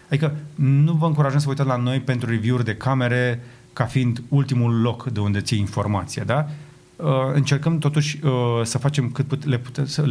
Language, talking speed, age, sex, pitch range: Romanian, 185 wpm, 30-49, male, 120-140 Hz